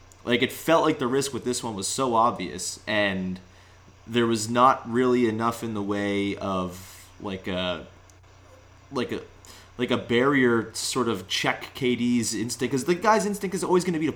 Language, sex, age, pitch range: English, male, 30-49, 95-130 Hz